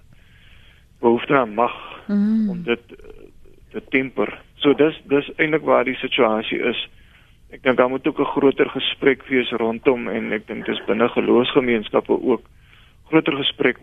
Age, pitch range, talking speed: 40-59, 120-140 Hz, 150 wpm